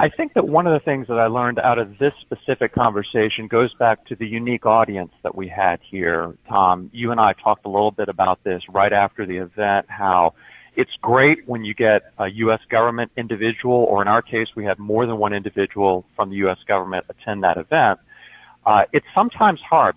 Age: 40-59